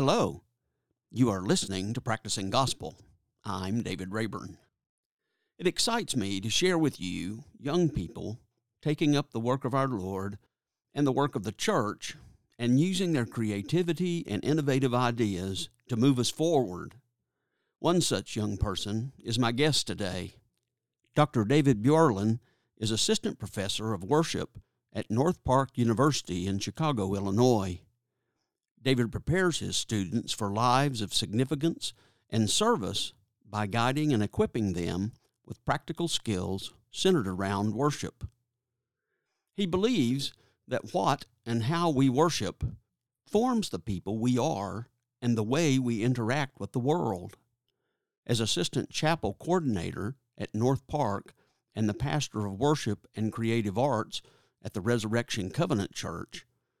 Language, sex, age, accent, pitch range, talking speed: English, male, 50-69, American, 105-140 Hz, 135 wpm